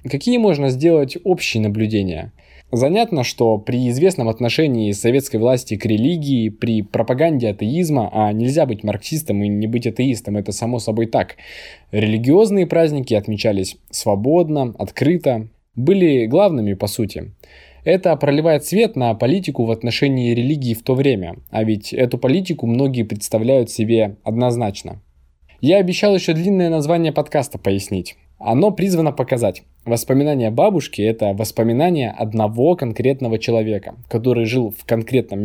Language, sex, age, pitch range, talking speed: Russian, male, 20-39, 110-145 Hz, 130 wpm